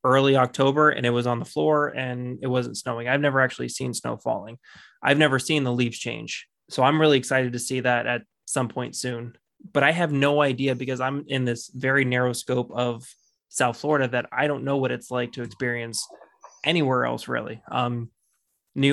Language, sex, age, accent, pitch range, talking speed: English, male, 20-39, American, 120-140 Hz, 205 wpm